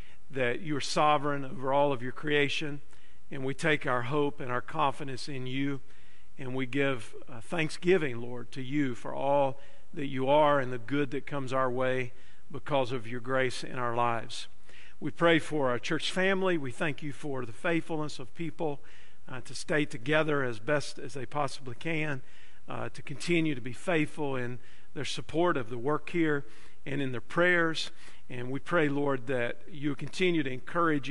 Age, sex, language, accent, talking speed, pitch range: 50-69, male, English, American, 185 wpm, 130-155 Hz